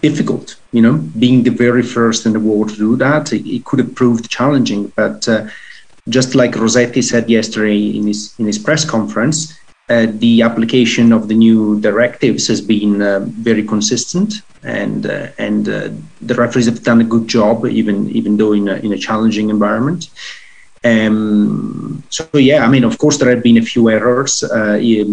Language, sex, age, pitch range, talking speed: English, male, 30-49, 110-120 Hz, 185 wpm